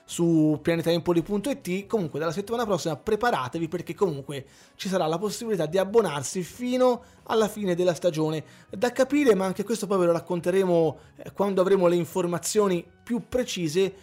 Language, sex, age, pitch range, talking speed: Italian, male, 20-39, 155-195 Hz, 150 wpm